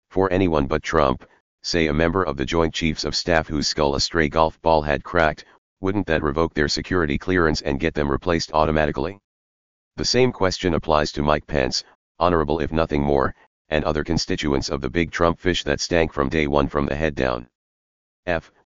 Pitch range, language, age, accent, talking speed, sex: 70-85 Hz, English, 40-59, American, 195 wpm, male